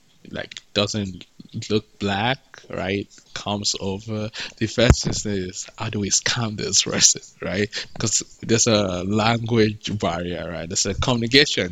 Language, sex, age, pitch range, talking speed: English, male, 20-39, 95-115 Hz, 135 wpm